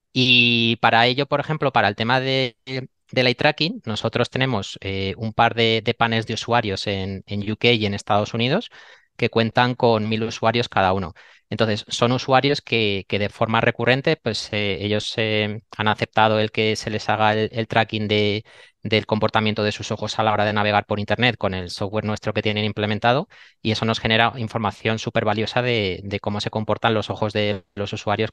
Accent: Spanish